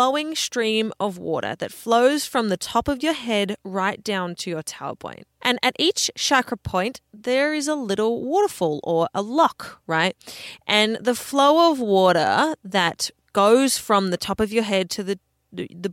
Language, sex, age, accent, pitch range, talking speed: English, female, 20-39, Australian, 190-255 Hz, 180 wpm